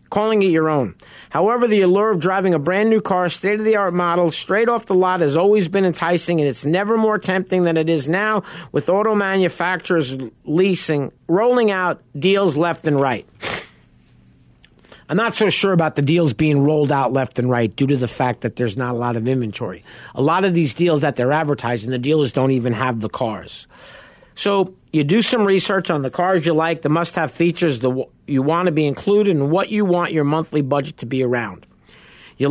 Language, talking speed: English, 205 wpm